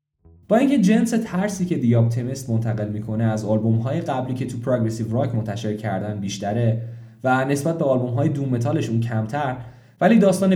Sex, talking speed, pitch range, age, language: male, 155 wpm, 115-160 Hz, 10-29, Persian